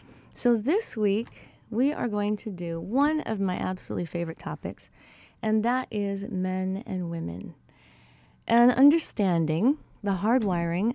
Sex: female